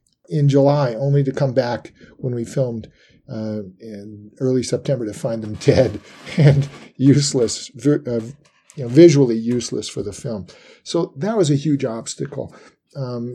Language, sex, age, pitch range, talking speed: English, male, 50-69, 115-145 Hz, 155 wpm